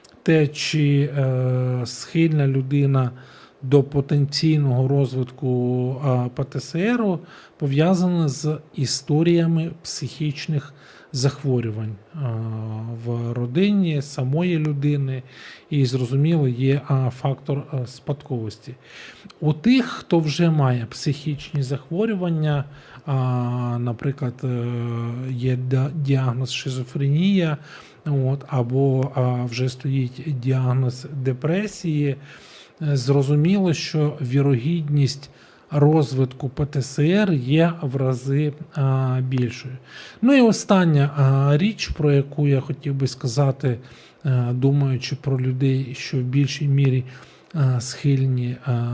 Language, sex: Ukrainian, male